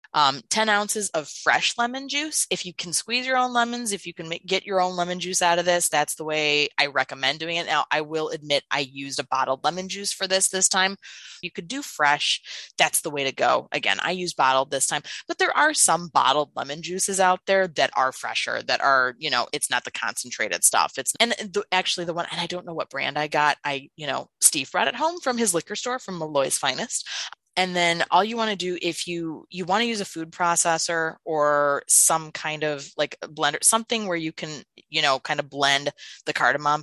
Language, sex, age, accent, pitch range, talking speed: English, female, 20-39, American, 145-195 Hz, 230 wpm